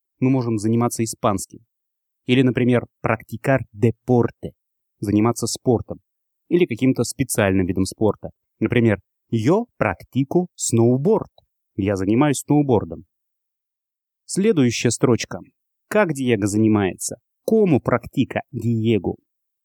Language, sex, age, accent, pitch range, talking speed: Russian, male, 30-49, native, 110-135 Hz, 100 wpm